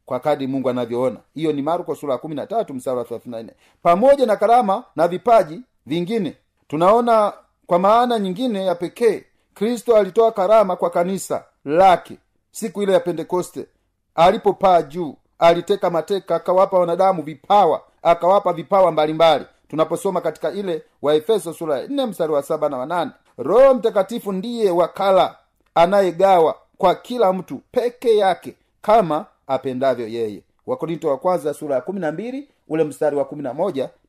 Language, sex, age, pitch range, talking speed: Swahili, male, 40-59, 150-205 Hz, 140 wpm